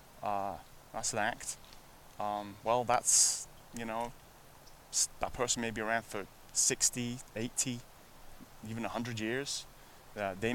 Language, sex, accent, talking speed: English, male, British, 125 wpm